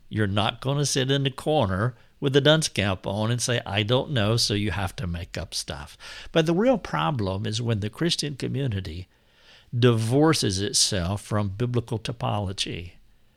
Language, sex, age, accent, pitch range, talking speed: English, male, 60-79, American, 105-140 Hz, 175 wpm